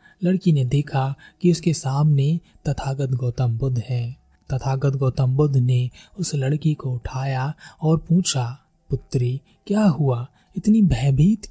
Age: 20-39